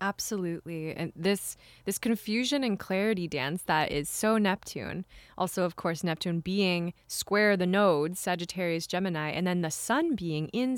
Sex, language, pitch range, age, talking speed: female, English, 170-225 Hz, 20-39, 155 wpm